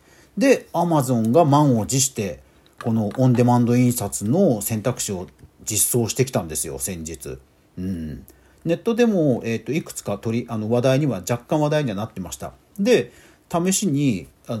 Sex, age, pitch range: male, 40-59, 105-160 Hz